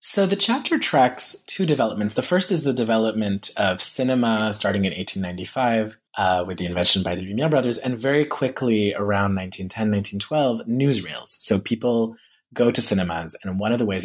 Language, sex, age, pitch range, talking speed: English, male, 20-39, 100-130 Hz, 175 wpm